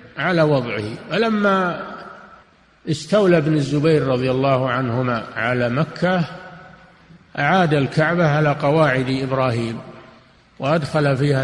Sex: male